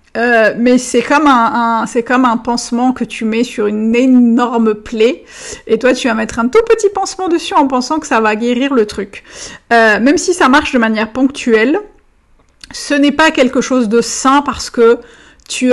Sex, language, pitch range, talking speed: female, French, 230-275 Hz, 190 wpm